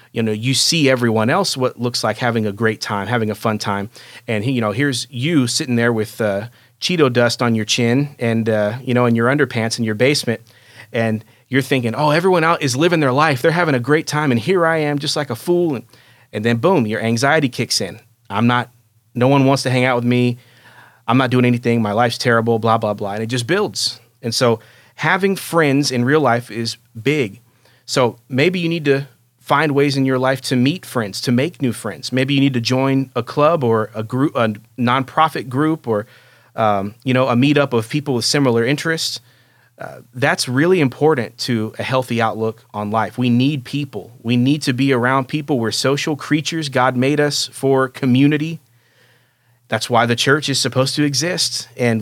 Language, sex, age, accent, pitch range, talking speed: English, male, 30-49, American, 115-140 Hz, 210 wpm